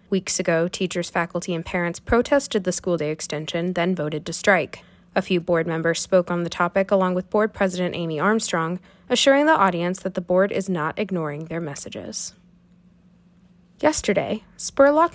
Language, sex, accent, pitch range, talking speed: English, female, American, 170-205 Hz, 165 wpm